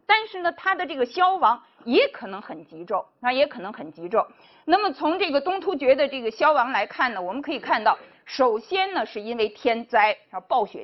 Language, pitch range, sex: Chinese, 240-375 Hz, female